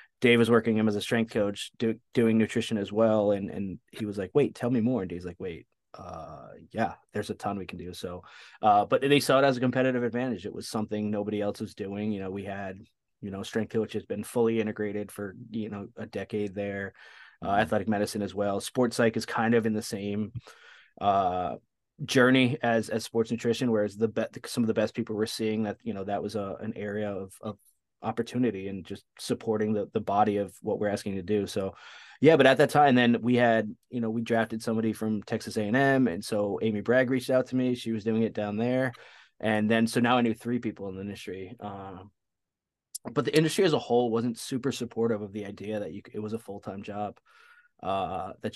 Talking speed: 230 wpm